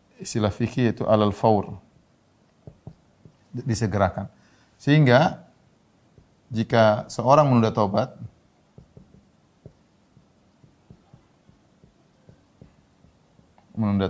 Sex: male